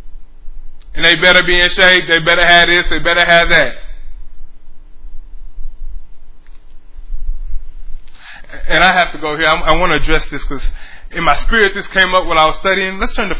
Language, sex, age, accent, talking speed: English, male, 20-39, American, 175 wpm